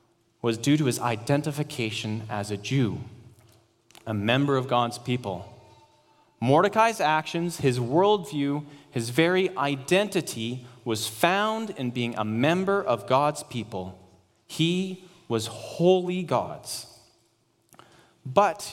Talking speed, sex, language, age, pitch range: 110 wpm, male, English, 30-49, 115-165 Hz